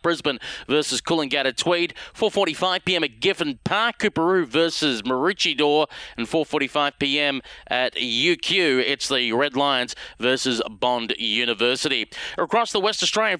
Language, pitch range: English, 145-185 Hz